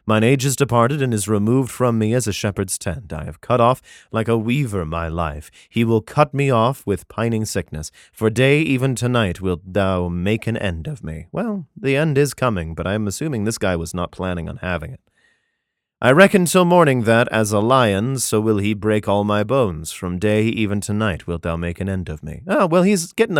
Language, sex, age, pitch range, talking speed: English, male, 30-49, 95-130 Hz, 230 wpm